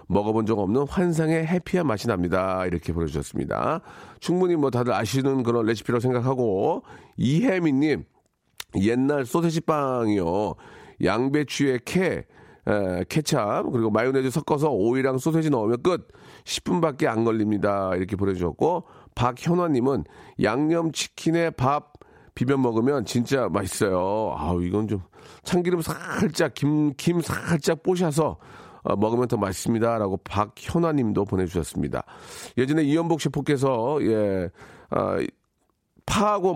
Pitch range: 105-150 Hz